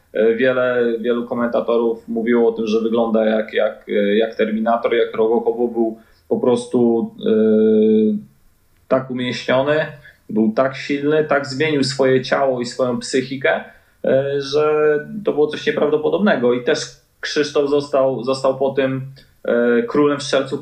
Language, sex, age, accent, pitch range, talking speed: Polish, male, 20-39, native, 115-145 Hz, 135 wpm